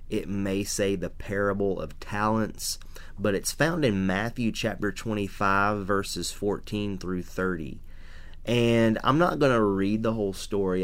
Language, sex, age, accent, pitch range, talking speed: English, male, 30-49, American, 90-110 Hz, 150 wpm